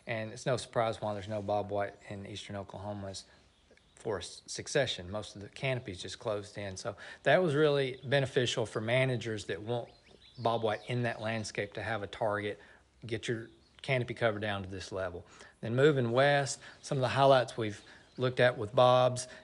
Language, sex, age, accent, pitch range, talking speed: English, male, 40-59, American, 105-125 Hz, 175 wpm